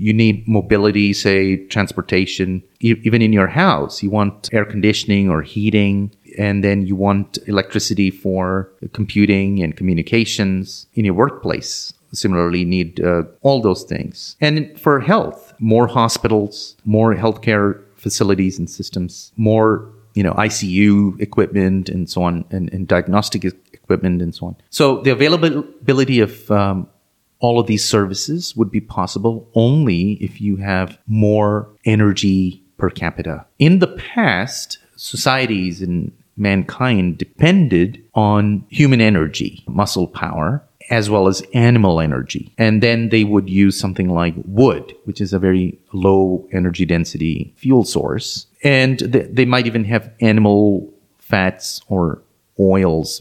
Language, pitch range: English, 95-115 Hz